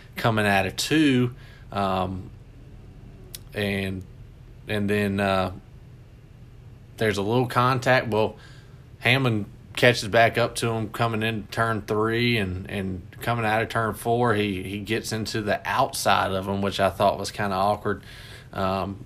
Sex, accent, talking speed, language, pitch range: male, American, 150 wpm, English, 100-120 Hz